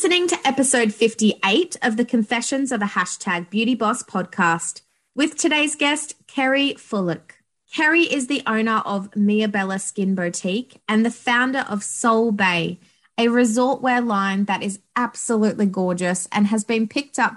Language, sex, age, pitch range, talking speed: English, female, 20-39, 190-240 Hz, 160 wpm